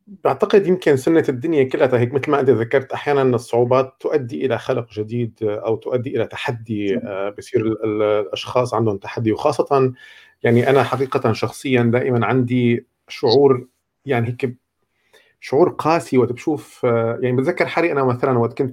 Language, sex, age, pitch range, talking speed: Arabic, male, 40-59, 115-135 Hz, 145 wpm